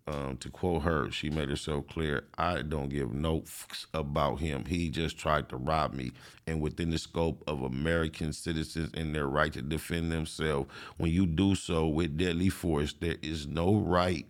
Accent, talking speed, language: American, 195 wpm, English